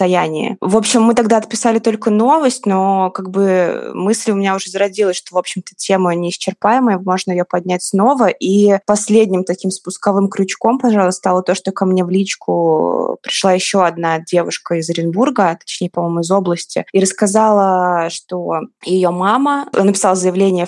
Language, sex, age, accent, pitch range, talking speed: Russian, female, 20-39, native, 180-210 Hz, 160 wpm